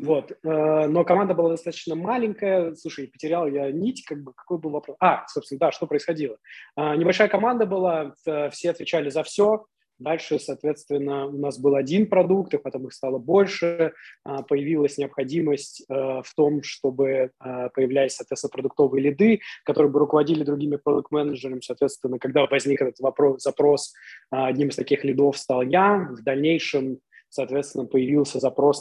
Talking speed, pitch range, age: 150 wpm, 135-170 Hz, 20-39